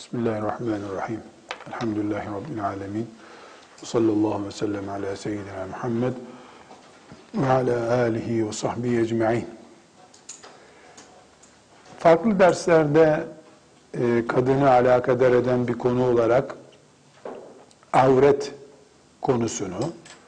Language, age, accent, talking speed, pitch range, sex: Turkish, 50-69, native, 80 wpm, 120-160 Hz, male